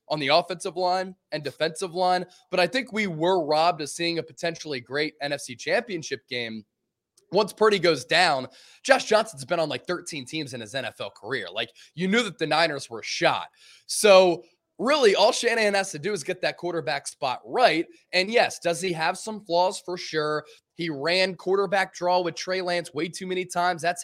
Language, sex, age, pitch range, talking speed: English, male, 20-39, 155-195 Hz, 195 wpm